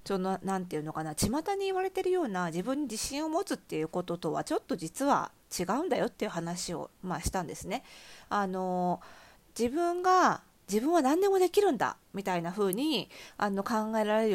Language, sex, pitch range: Japanese, female, 195-310 Hz